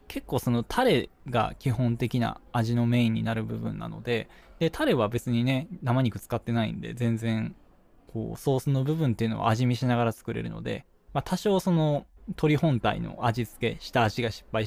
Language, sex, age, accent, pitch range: Japanese, male, 20-39, native, 115-155 Hz